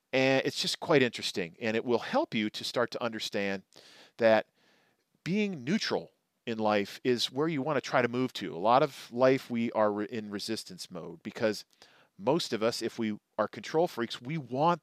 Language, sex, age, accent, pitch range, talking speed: English, male, 40-59, American, 115-190 Hz, 195 wpm